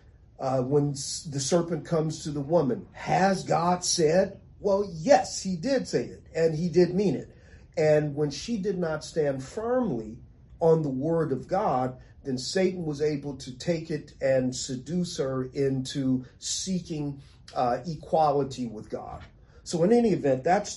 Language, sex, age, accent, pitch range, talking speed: English, male, 40-59, American, 125-160 Hz, 160 wpm